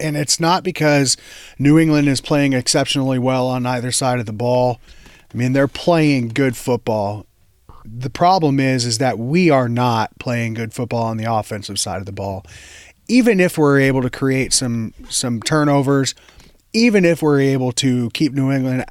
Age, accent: 30-49, American